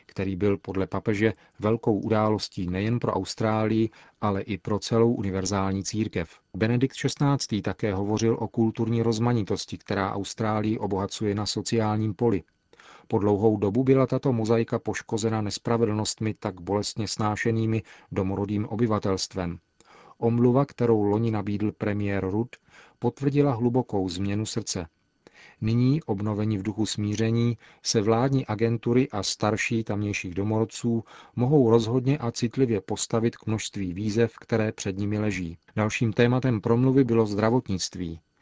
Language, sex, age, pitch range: Czech, male, 40-59, 100-115 Hz